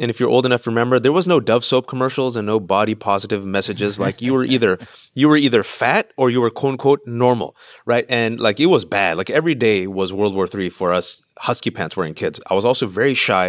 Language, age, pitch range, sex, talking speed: English, 30-49, 100-130 Hz, male, 245 wpm